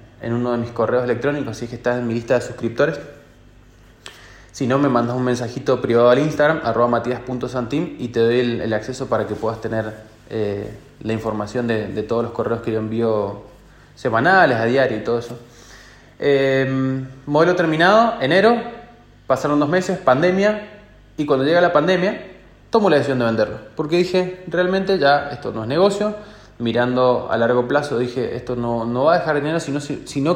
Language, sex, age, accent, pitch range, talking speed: Spanish, male, 20-39, Argentinian, 120-170 Hz, 185 wpm